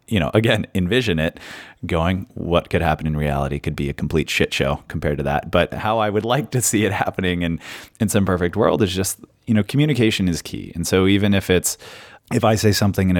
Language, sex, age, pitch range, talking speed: English, male, 30-49, 80-110 Hz, 230 wpm